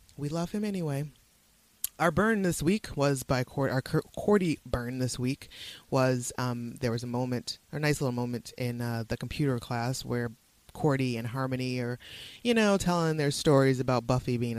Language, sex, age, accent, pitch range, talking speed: English, female, 30-49, American, 125-150 Hz, 180 wpm